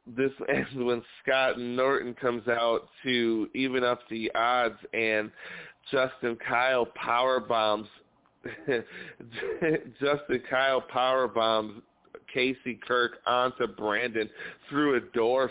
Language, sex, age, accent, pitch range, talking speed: English, male, 40-59, American, 110-130 Hz, 110 wpm